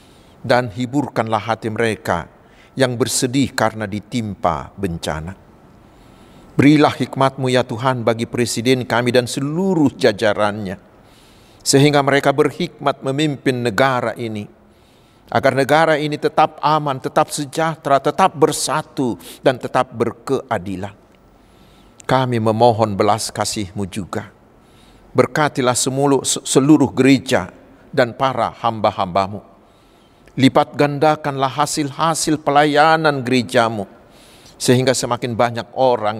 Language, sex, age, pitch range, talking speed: Indonesian, male, 50-69, 110-140 Hz, 95 wpm